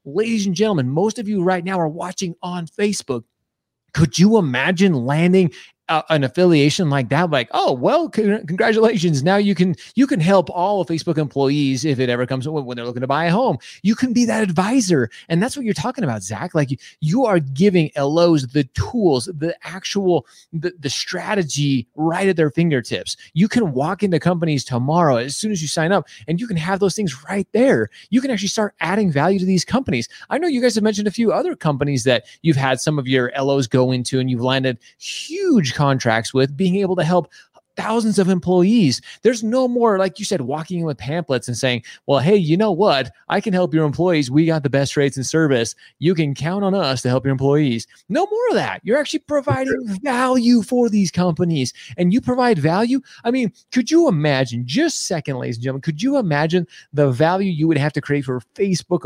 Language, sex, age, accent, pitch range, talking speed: English, male, 30-49, American, 140-205 Hz, 215 wpm